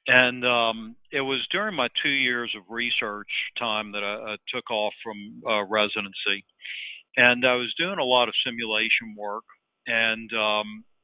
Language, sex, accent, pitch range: English, male, American, 110-125 Hz